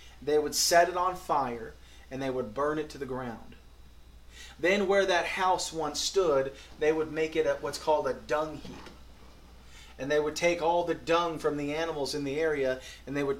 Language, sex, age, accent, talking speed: English, male, 30-49, American, 205 wpm